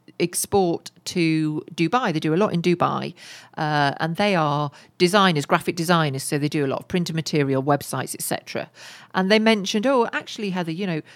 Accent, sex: British, female